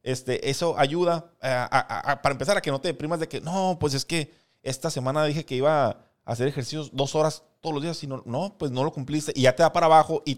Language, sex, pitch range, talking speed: English, male, 130-165 Hz, 265 wpm